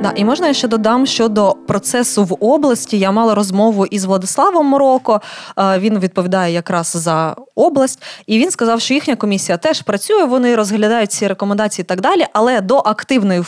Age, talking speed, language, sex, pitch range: 20-39, 175 wpm, Ukrainian, female, 190-245 Hz